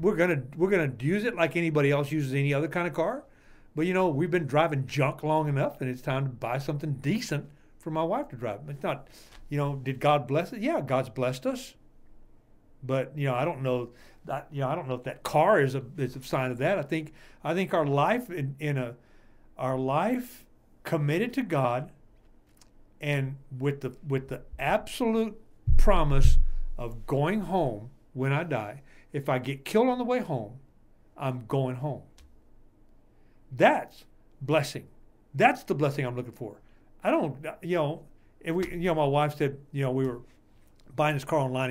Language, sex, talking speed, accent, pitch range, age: English, male, 195 wpm, American, 125-155 Hz, 60-79